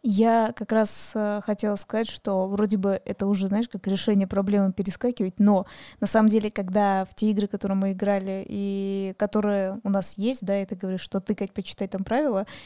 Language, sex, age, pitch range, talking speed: Russian, female, 20-39, 200-225 Hz, 200 wpm